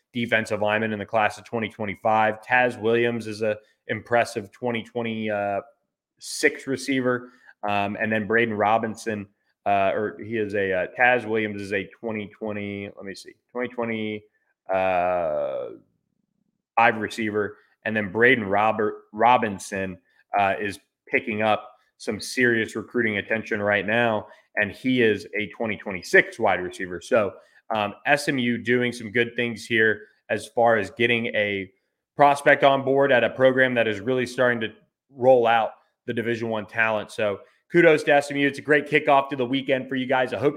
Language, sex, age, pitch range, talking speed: English, male, 20-39, 110-135 Hz, 160 wpm